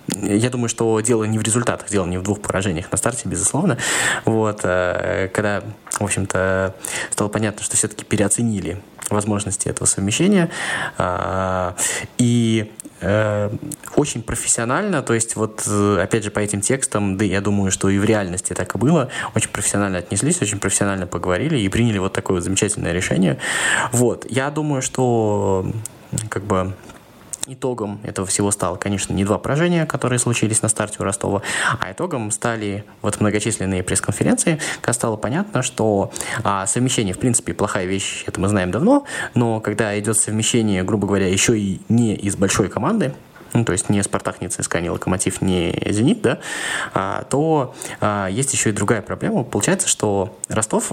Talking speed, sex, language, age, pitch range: 160 wpm, male, Russian, 20-39, 100-120 Hz